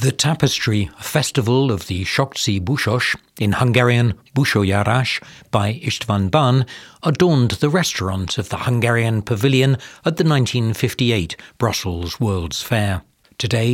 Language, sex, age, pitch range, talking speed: English, male, 60-79, 105-135 Hz, 120 wpm